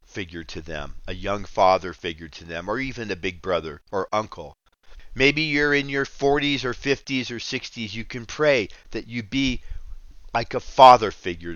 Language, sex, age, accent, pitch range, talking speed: English, male, 50-69, American, 85-135 Hz, 180 wpm